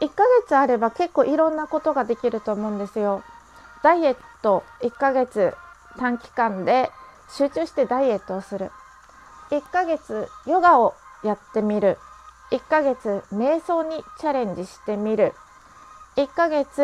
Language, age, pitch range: Japanese, 30-49, 230-300 Hz